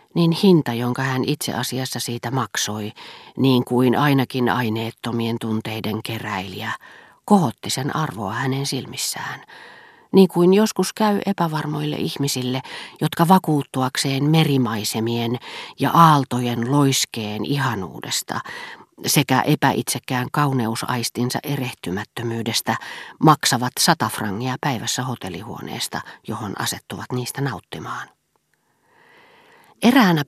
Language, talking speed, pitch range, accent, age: Finnish, 90 wpm, 120-150 Hz, native, 40-59